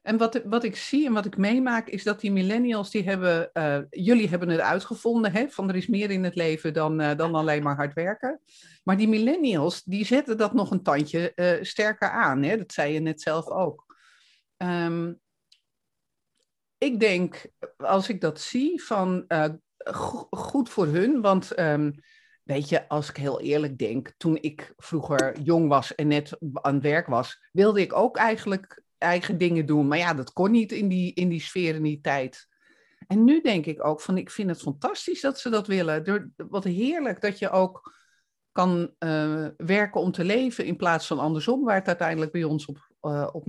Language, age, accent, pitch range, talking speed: Dutch, 50-69, Dutch, 155-225 Hz, 195 wpm